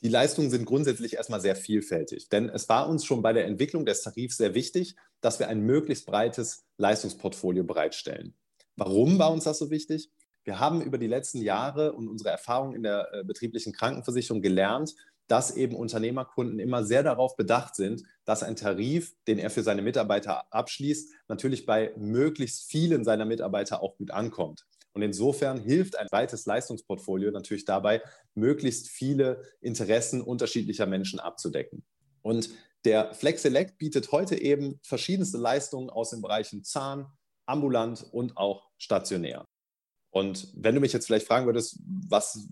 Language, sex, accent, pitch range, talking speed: German, male, German, 110-135 Hz, 155 wpm